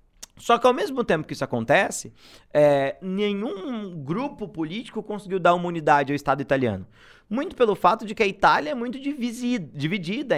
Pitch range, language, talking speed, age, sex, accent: 150-215 Hz, Portuguese, 170 wpm, 20-39, male, Brazilian